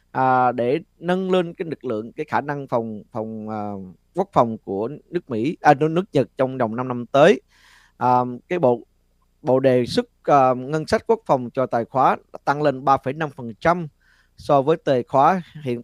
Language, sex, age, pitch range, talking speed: Vietnamese, male, 20-39, 115-155 Hz, 180 wpm